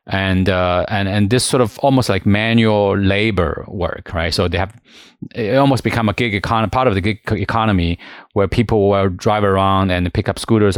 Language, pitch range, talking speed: English, 95-115 Hz, 200 wpm